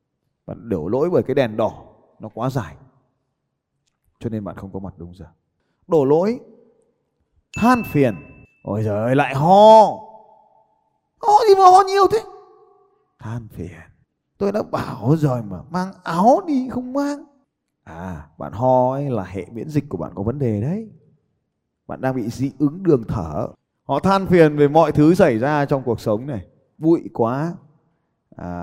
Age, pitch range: 20-39, 115-170 Hz